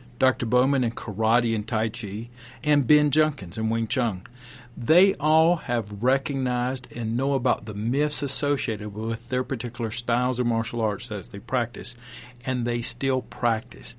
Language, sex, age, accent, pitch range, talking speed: English, male, 50-69, American, 115-145 Hz, 160 wpm